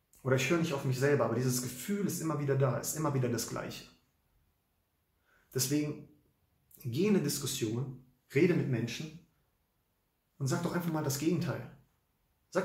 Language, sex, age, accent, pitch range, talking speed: English, male, 40-59, German, 115-145 Hz, 165 wpm